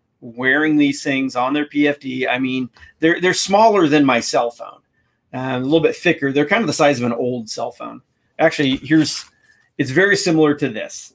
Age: 40-59